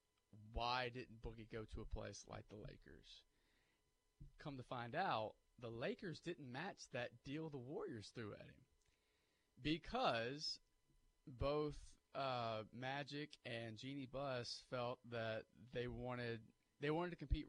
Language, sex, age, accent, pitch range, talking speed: English, male, 30-49, American, 110-140 Hz, 135 wpm